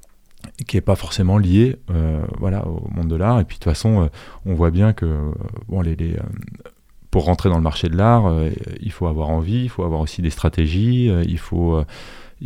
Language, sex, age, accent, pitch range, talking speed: French, male, 30-49, French, 85-105 Hz, 230 wpm